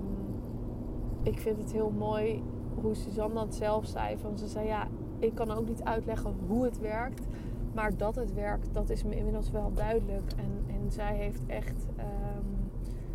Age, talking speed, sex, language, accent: 20-39, 175 wpm, female, Dutch, Dutch